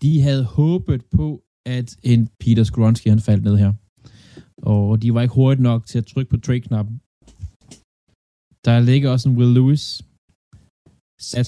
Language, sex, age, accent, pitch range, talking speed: Danish, male, 20-39, native, 110-130 Hz, 155 wpm